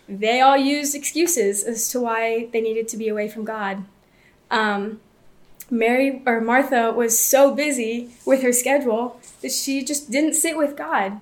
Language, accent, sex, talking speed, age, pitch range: English, American, female, 165 wpm, 20-39, 225-275 Hz